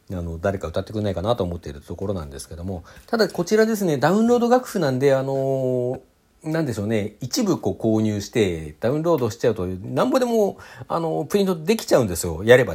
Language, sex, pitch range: Japanese, male, 105-175 Hz